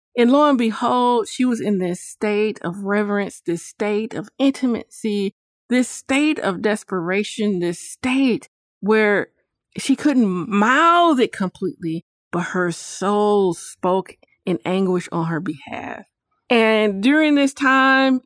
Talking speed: 130 wpm